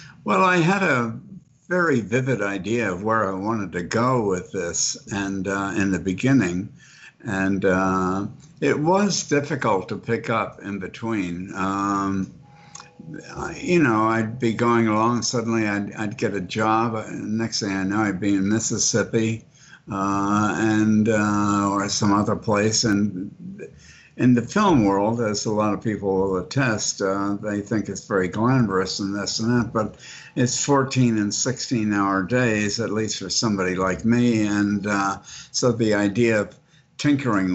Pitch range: 100-120 Hz